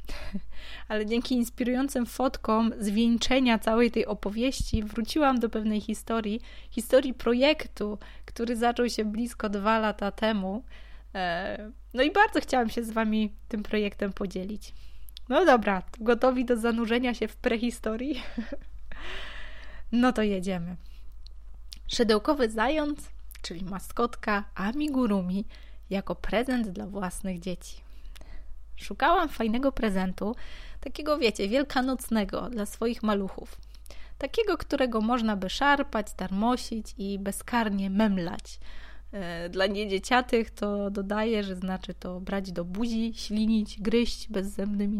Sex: female